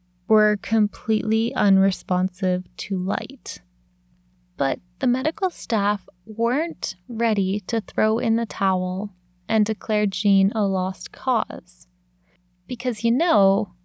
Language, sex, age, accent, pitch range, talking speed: English, female, 20-39, American, 180-230 Hz, 110 wpm